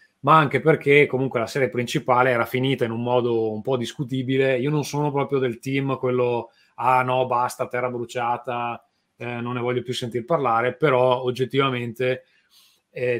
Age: 20-39